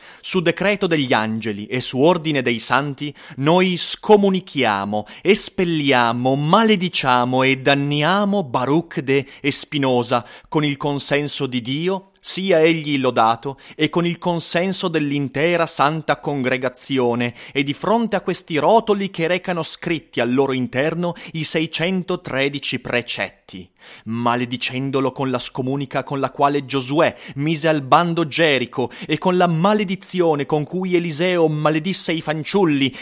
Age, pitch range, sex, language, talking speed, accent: 30-49, 135-180 Hz, male, Italian, 130 wpm, native